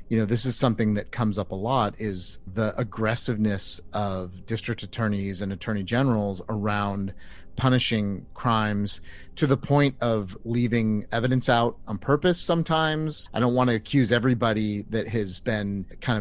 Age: 30-49